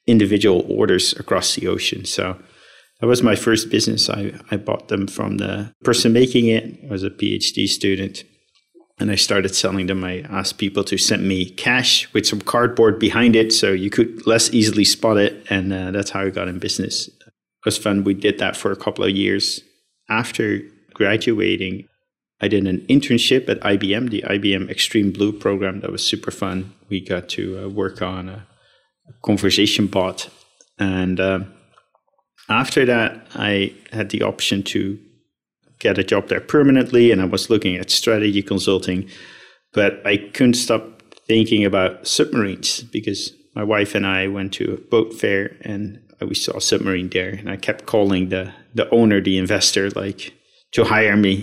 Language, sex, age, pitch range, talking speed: English, male, 30-49, 95-110 Hz, 175 wpm